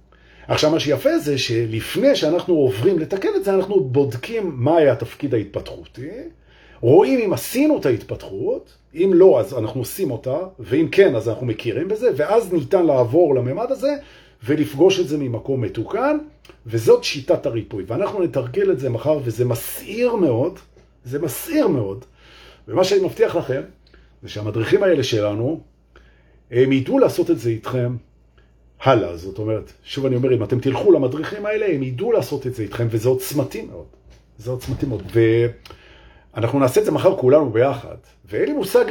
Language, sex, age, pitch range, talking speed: Hebrew, male, 40-59, 115-190 Hz, 130 wpm